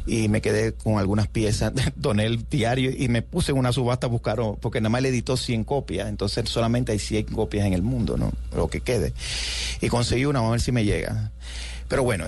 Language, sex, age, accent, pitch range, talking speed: Spanish, male, 30-49, Venezuelan, 100-125 Hz, 230 wpm